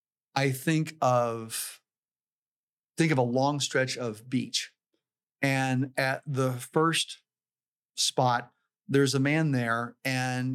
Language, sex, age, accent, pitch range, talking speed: English, male, 40-59, American, 120-140 Hz, 115 wpm